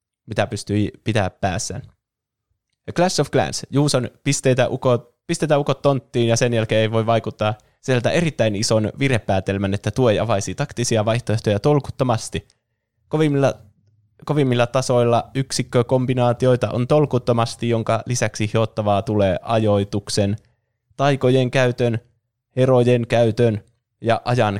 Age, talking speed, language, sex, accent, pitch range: 20-39, 120 wpm, Finnish, male, native, 100-120 Hz